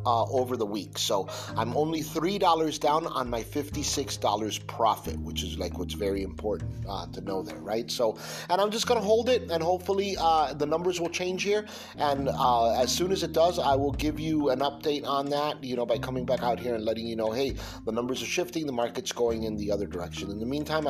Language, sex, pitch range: English, male, 110-155 Hz